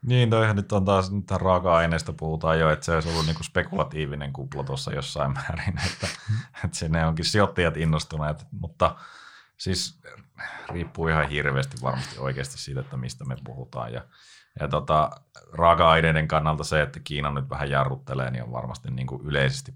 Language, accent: Finnish, native